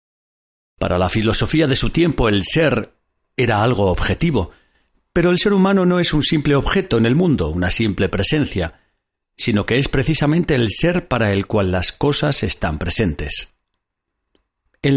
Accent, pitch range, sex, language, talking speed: Spanish, 100-150 Hz, male, Spanish, 160 wpm